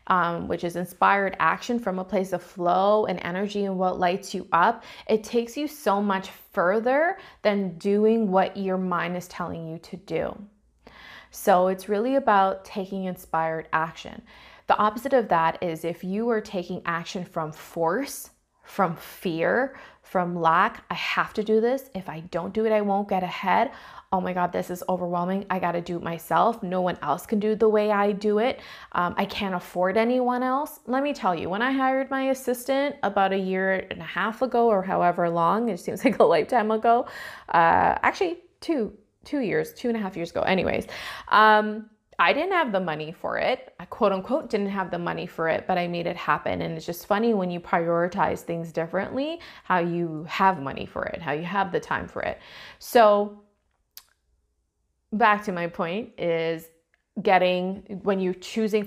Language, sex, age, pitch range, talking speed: English, female, 20-39, 175-220 Hz, 190 wpm